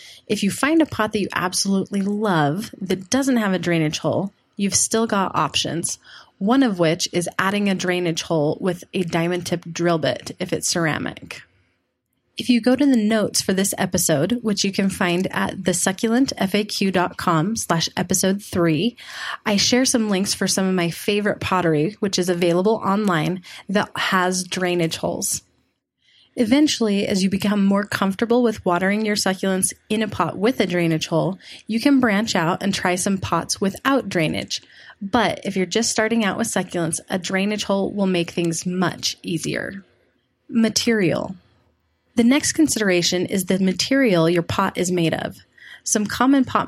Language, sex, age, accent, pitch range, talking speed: English, female, 20-39, American, 175-215 Hz, 165 wpm